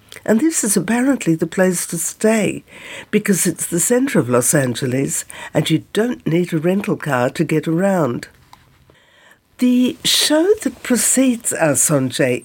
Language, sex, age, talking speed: English, female, 60-79, 150 wpm